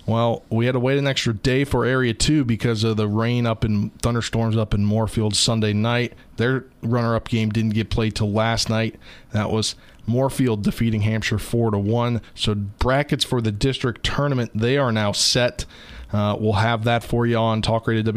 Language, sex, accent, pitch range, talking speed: English, male, American, 110-125 Hz, 190 wpm